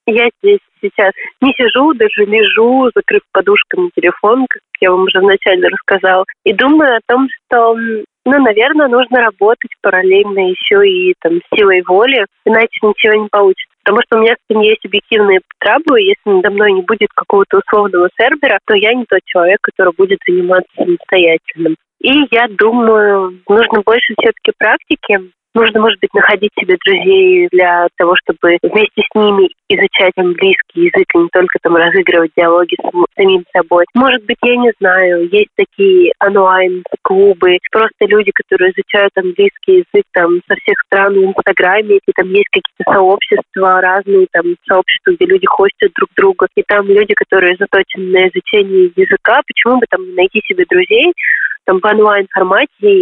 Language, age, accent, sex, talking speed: Russian, 20-39, native, female, 160 wpm